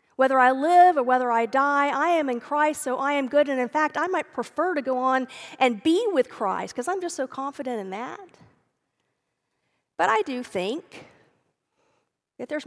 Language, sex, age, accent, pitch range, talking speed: English, female, 50-69, American, 210-300 Hz, 195 wpm